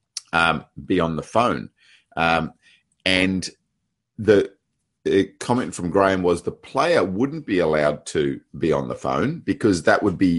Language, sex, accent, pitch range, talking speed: English, male, Australian, 80-100 Hz, 155 wpm